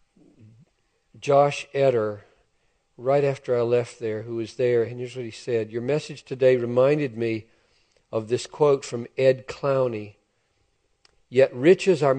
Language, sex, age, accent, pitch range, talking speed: English, male, 50-69, American, 115-140 Hz, 150 wpm